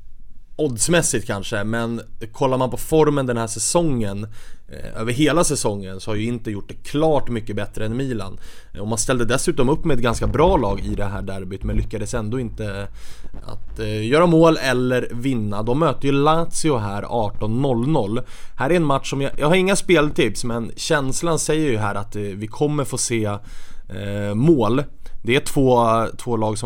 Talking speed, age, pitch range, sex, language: 180 wpm, 20-39, 110-135 Hz, male, English